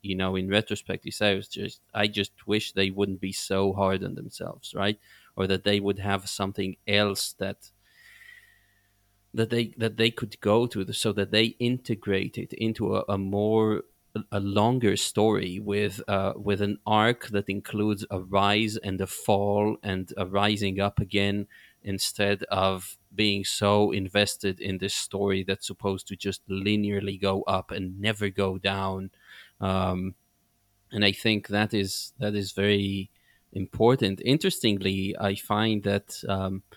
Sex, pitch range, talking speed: male, 95-105 Hz, 160 wpm